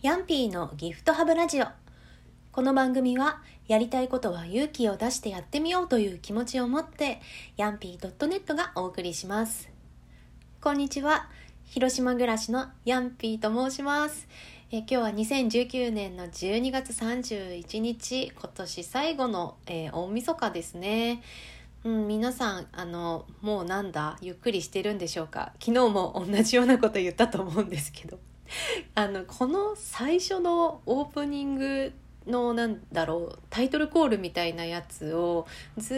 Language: Japanese